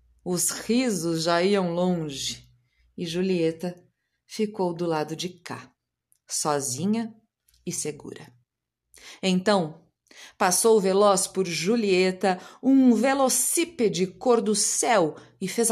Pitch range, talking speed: 150-215 Hz, 105 wpm